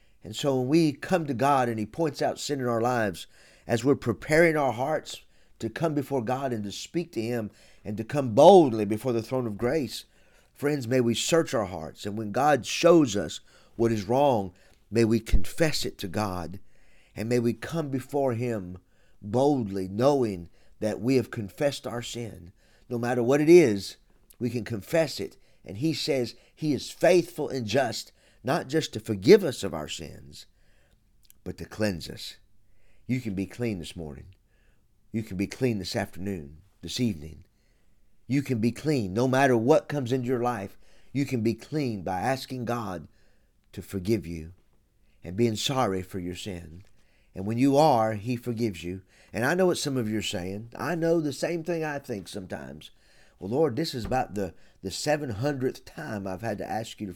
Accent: American